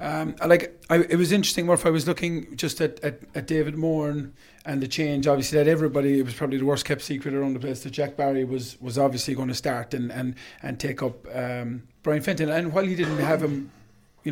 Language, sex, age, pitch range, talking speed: English, male, 30-49, 140-160 Hz, 240 wpm